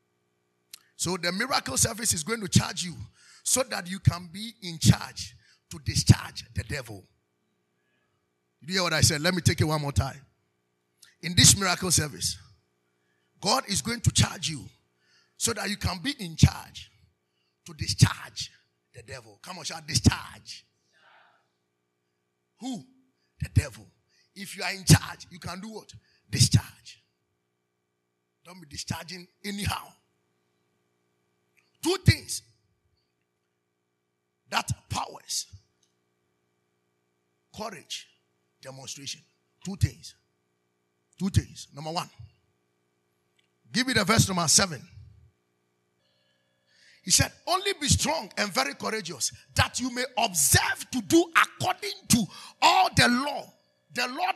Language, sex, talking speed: English, male, 125 wpm